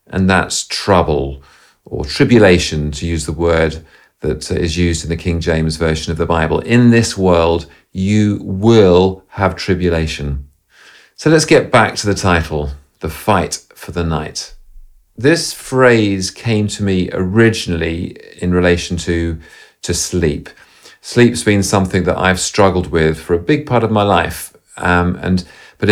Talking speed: 155 wpm